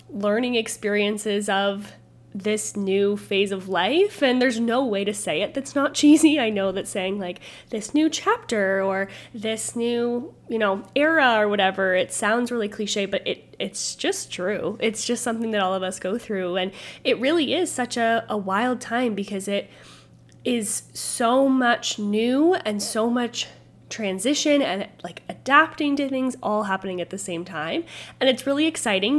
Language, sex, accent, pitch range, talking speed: English, female, American, 195-245 Hz, 175 wpm